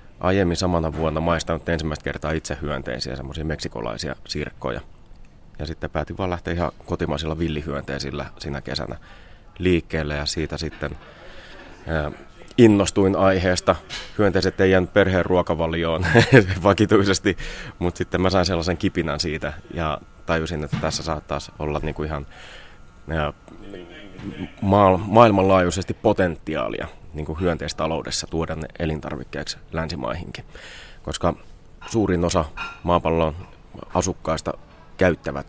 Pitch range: 75-90 Hz